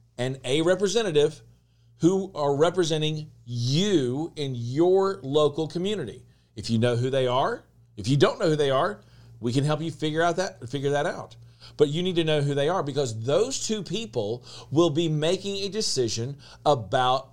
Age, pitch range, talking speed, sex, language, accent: 40-59, 120-165 Hz, 180 wpm, male, English, American